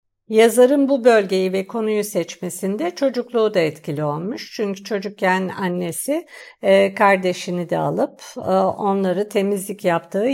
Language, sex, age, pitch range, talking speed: Turkish, female, 60-79, 175-225 Hz, 110 wpm